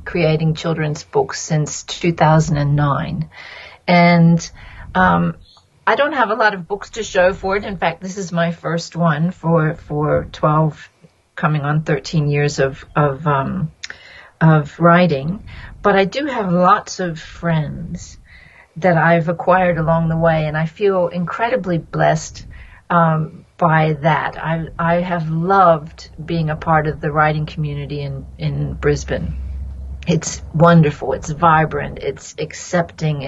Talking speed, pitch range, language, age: 140 wpm, 150-175 Hz, English, 40-59